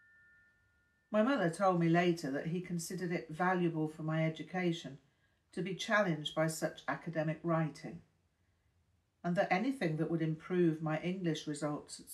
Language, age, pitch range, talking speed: English, 50-69, 130-175 Hz, 150 wpm